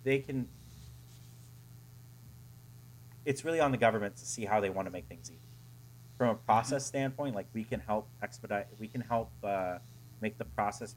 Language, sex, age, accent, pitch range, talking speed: English, male, 30-49, American, 100-125 Hz, 175 wpm